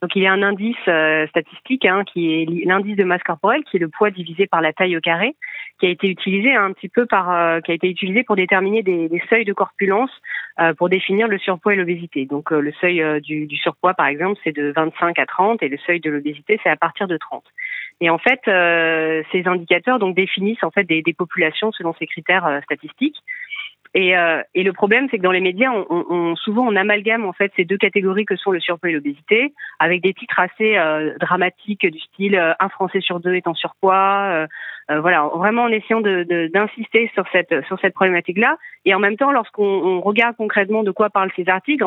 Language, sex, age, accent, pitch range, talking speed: French, female, 30-49, French, 170-210 Hz, 240 wpm